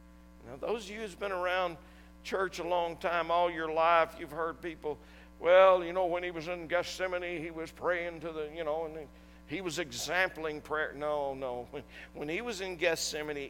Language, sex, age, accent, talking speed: English, male, 50-69, American, 205 wpm